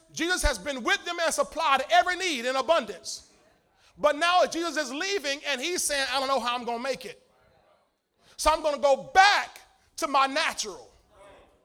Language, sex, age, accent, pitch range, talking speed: English, male, 30-49, American, 295-380 Hz, 190 wpm